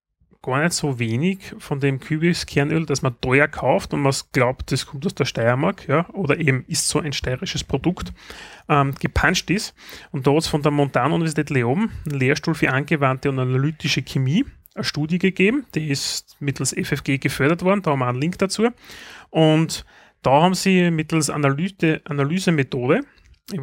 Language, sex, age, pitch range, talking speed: German, male, 30-49, 135-160 Hz, 170 wpm